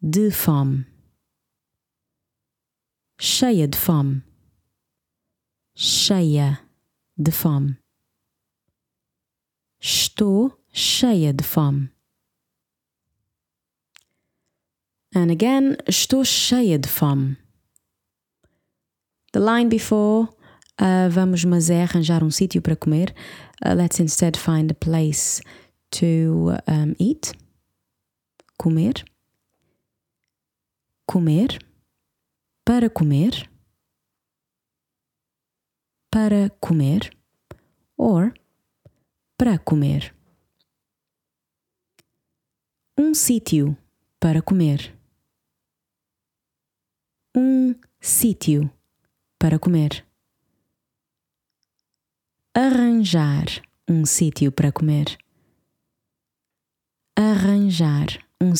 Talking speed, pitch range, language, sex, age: 65 wpm, 145-210 Hz, English, female, 20-39